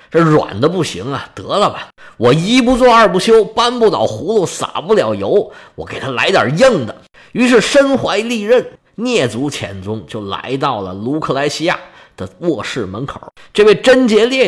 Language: Chinese